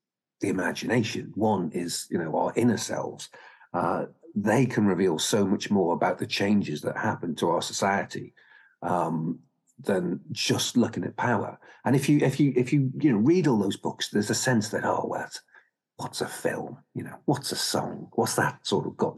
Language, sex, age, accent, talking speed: English, male, 50-69, British, 195 wpm